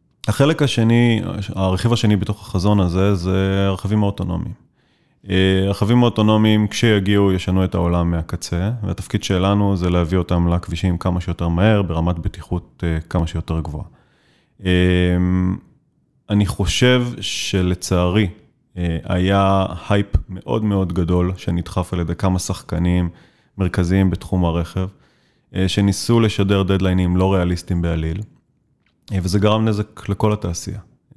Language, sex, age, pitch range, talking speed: Hebrew, male, 30-49, 85-100 Hz, 110 wpm